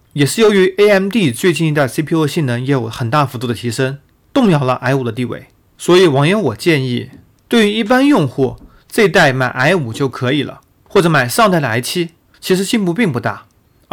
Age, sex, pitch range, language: 30-49, male, 130-195 Hz, Chinese